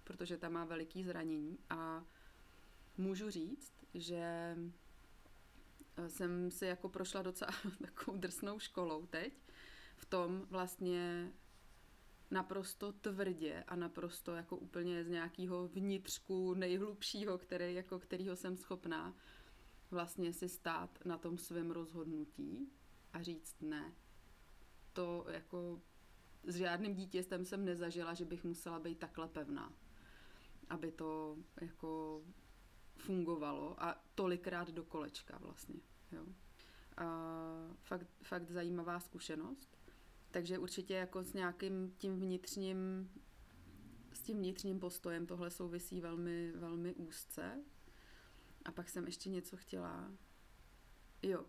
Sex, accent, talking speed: female, native, 115 wpm